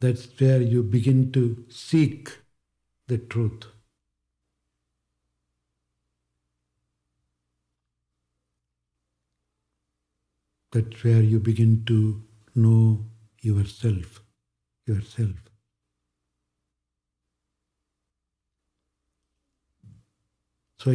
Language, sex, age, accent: English, male, 60-79, Indian